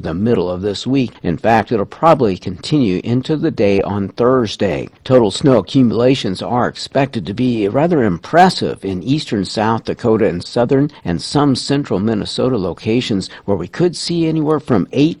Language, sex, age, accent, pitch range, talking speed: English, male, 50-69, American, 100-135 Hz, 165 wpm